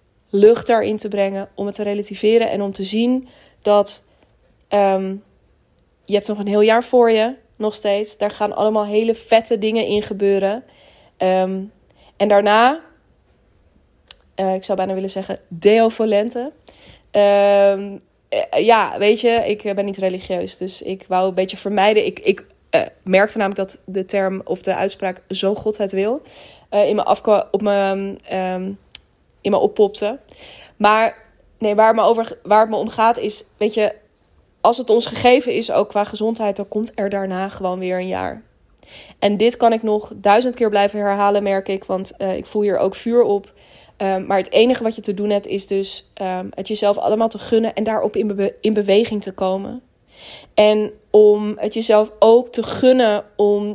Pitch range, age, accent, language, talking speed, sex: 195-220 Hz, 20-39, Dutch, Dutch, 170 wpm, female